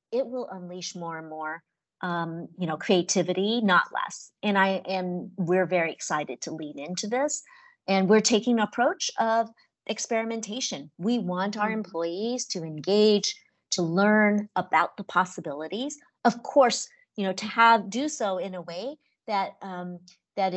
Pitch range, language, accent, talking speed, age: 175-220 Hz, English, American, 160 wpm, 40-59